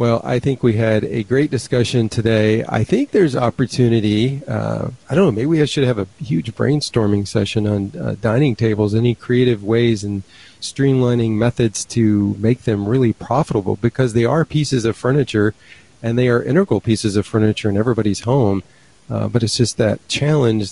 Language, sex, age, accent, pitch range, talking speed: English, male, 40-59, American, 105-125 Hz, 180 wpm